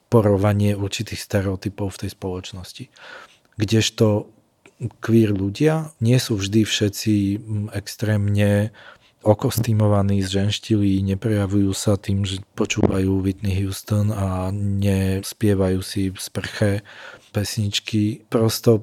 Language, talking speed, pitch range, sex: Slovak, 95 wpm, 100-115 Hz, male